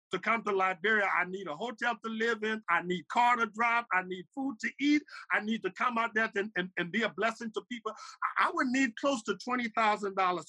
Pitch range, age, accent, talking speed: 180-230 Hz, 50-69, American, 235 wpm